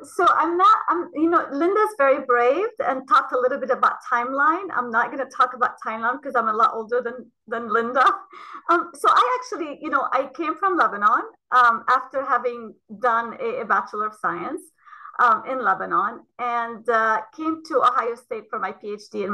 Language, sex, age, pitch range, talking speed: English, female, 30-49, 230-320 Hz, 195 wpm